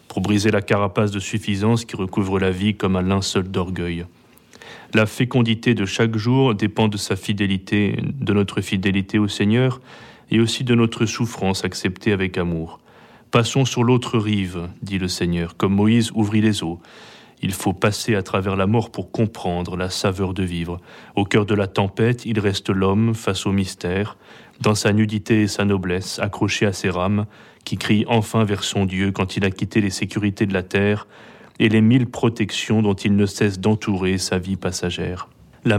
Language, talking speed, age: French, 185 wpm, 30-49